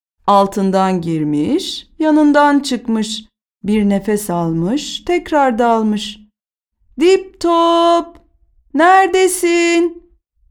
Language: Turkish